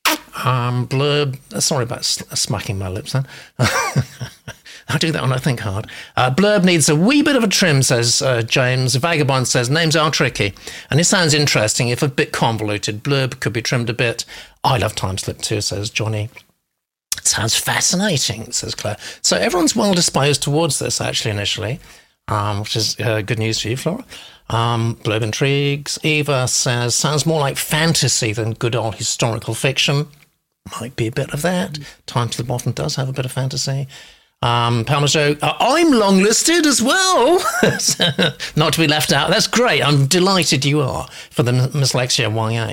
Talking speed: 180 wpm